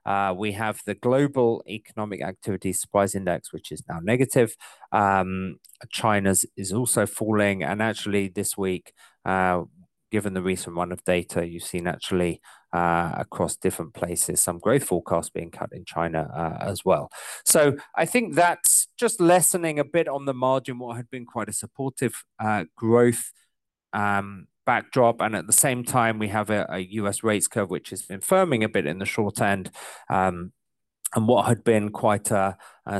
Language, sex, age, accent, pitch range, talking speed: English, male, 30-49, British, 95-120 Hz, 175 wpm